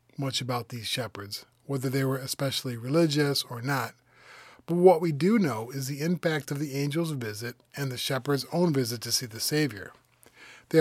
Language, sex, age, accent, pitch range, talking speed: English, male, 30-49, American, 125-155 Hz, 185 wpm